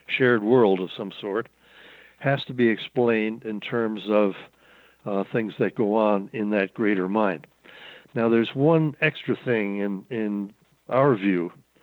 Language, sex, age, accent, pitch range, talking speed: English, male, 60-79, American, 100-120 Hz, 150 wpm